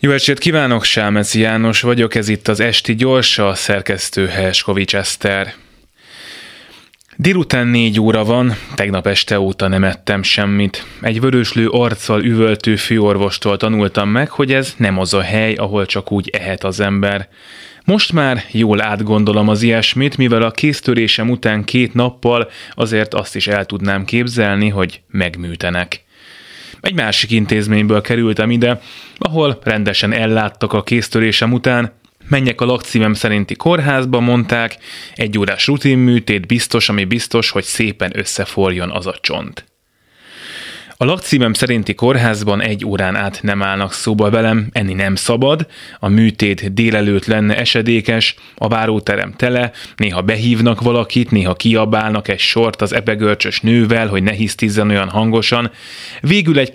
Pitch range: 100-120 Hz